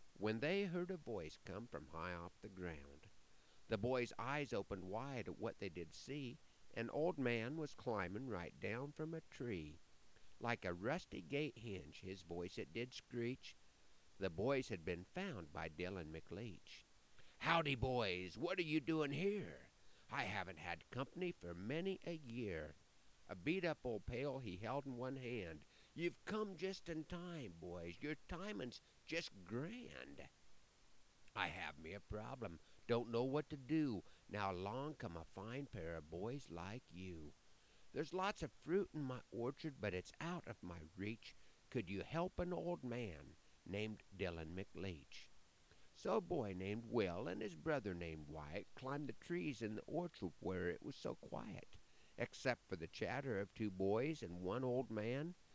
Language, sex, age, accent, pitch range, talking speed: English, male, 50-69, American, 90-145 Hz, 170 wpm